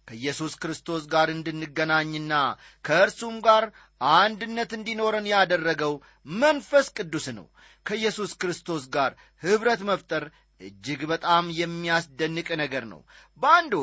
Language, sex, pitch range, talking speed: Amharic, male, 150-210 Hz, 100 wpm